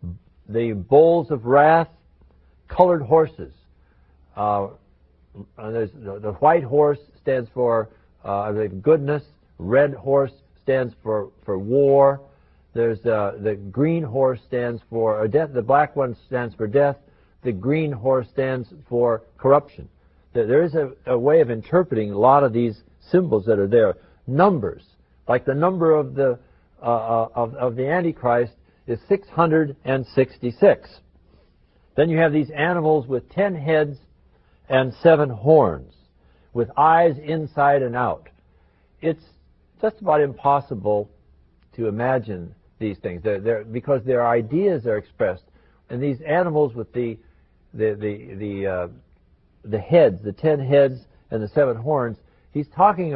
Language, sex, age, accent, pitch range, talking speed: English, male, 60-79, American, 95-145 Hz, 140 wpm